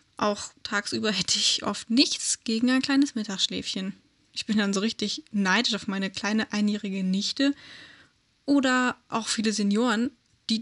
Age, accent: 10-29, German